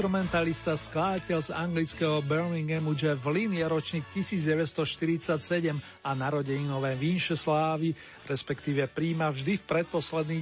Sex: male